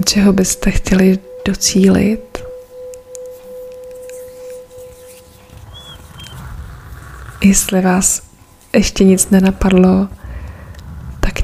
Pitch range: 180-200 Hz